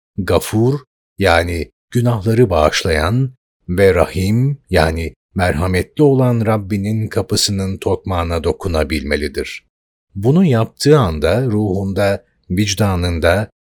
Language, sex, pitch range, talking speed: Turkish, male, 85-125 Hz, 80 wpm